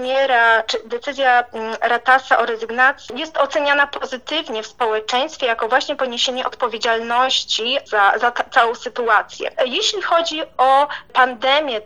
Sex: female